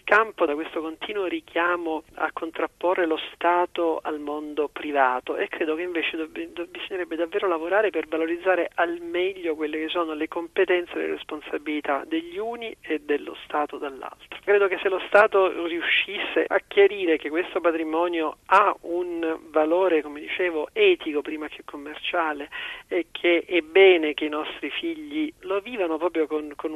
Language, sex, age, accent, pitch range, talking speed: Italian, male, 40-59, native, 150-185 Hz, 155 wpm